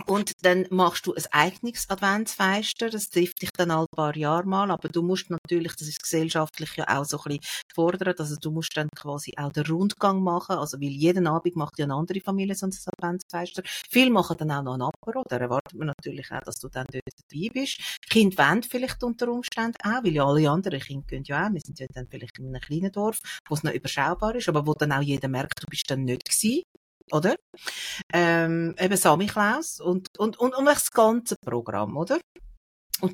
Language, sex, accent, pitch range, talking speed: German, female, Austrian, 145-190 Hz, 215 wpm